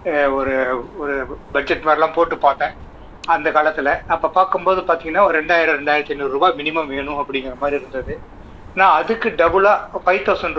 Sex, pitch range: male, 140-180 Hz